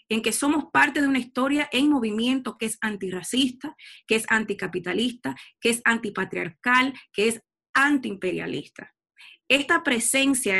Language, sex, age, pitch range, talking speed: Spanish, female, 30-49, 210-265 Hz, 130 wpm